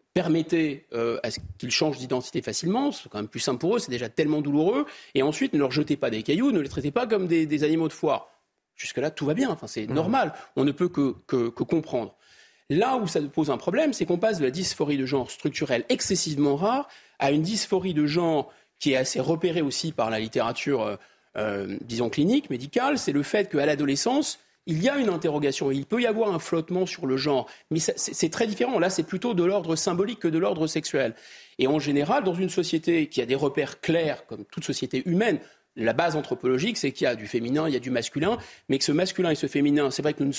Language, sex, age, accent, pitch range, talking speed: French, male, 40-59, French, 135-175 Hz, 240 wpm